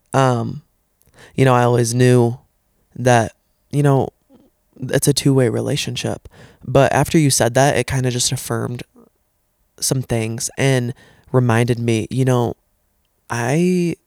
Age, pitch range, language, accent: 20-39, 120-135 Hz, English, American